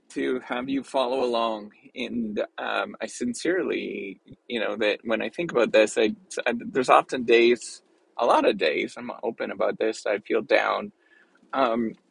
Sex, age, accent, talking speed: male, 20-39, American, 170 wpm